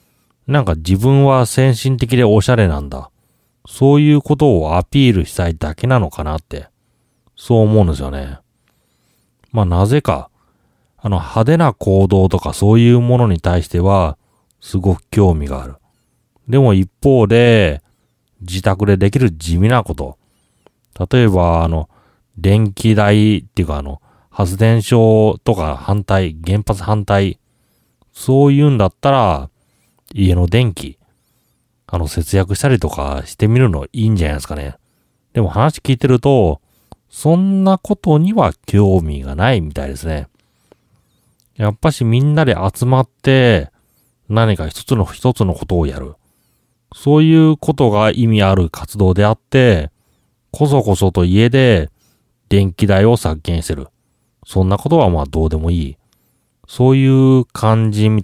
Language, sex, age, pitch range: Japanese, male, 30-49, 85-125 Hz